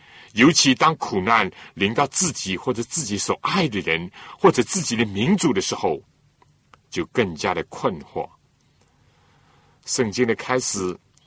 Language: Chinese